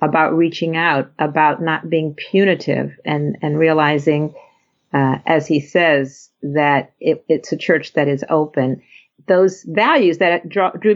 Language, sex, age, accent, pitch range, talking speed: English, female, 50-69, American, 150-180 Hz, 135 wpm